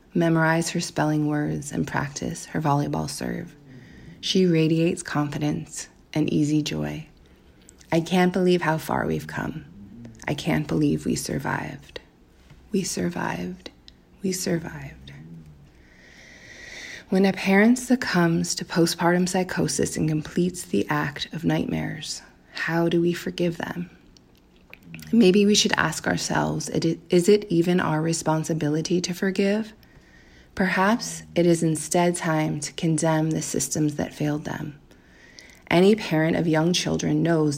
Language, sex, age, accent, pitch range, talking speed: English, female, 20-39, American, 115-175 Hz, 125 wpm